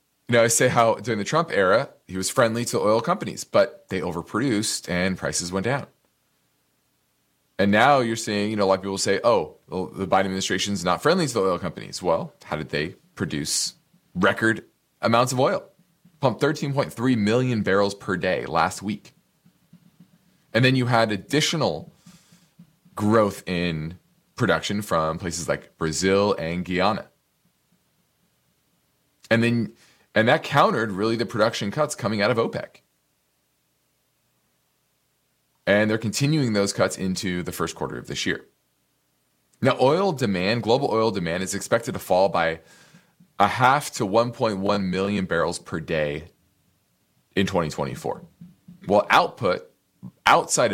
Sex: male